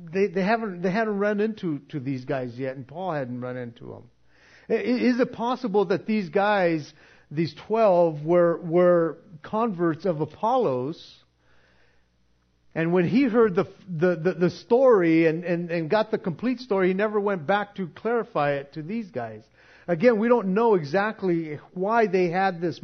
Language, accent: English, American